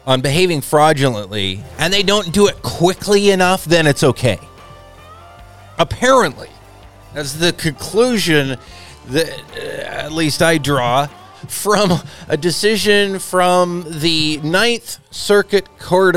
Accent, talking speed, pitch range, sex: American, 115 wpm, 125-165 Hz, male